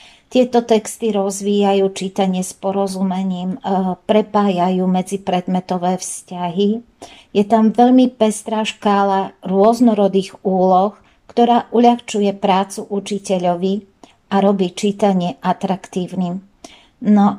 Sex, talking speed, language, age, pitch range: female, 90 wpm, Slovak, 50-69, 195-220 Hz